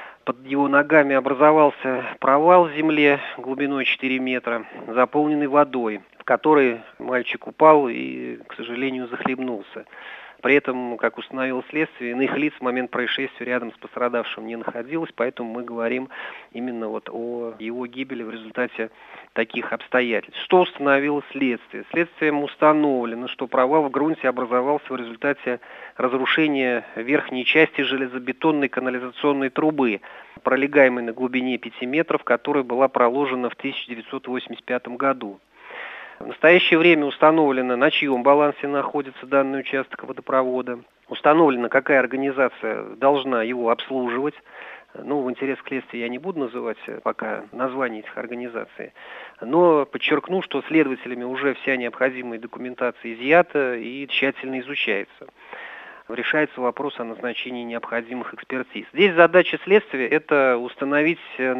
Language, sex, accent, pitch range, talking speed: Russian, male, native, 125-145 Hz, 125 wpm